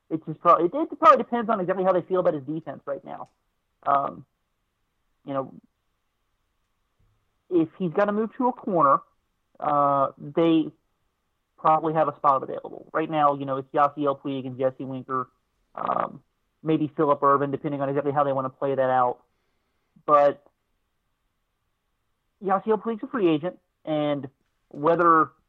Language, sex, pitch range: English, male, 145-175 Hz